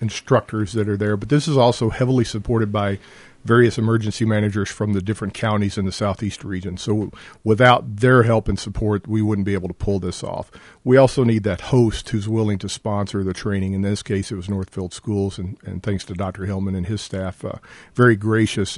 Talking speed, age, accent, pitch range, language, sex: 210 wpm, 50-69, American, 100-120 Hz, English, male